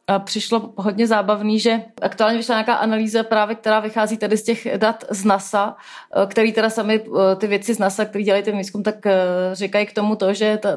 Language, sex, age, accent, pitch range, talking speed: Czech, female, 30-49, native, 195-230 Hz, 200 wpm